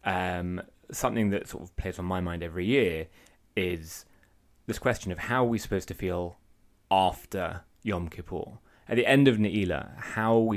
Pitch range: 85-100 Hz